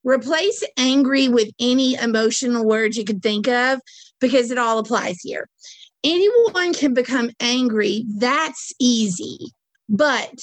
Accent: American